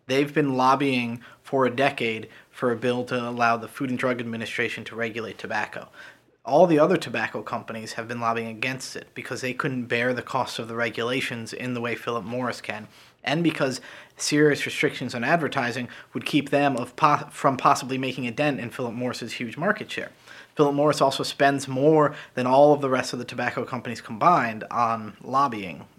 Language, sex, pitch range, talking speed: English, male, 120-140 Hz, 185 wpm